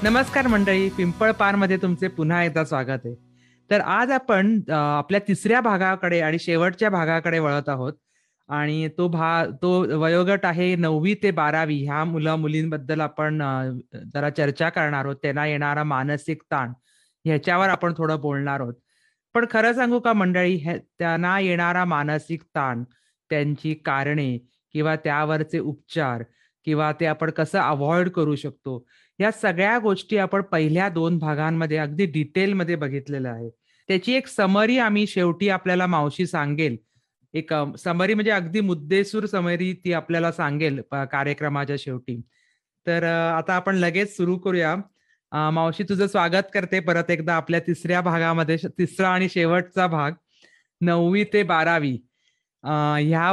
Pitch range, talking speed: 150-185 Hz, 100 wpm